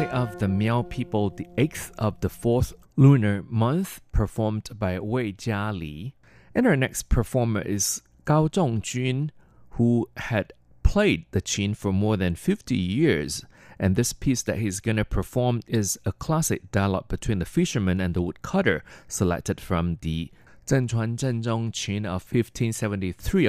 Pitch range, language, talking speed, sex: 90-120 Hz, English, 150 wpm, male